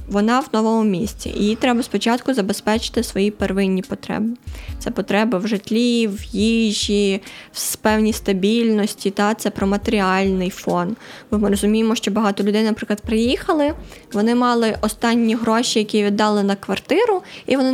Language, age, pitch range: Ukrainian, 20-39, 205-250 Hz